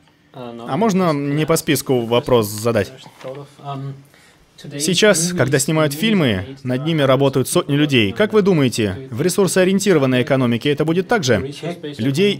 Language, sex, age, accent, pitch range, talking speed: Russian, male, 30-49, native, 125-155 Hz, 125 wpm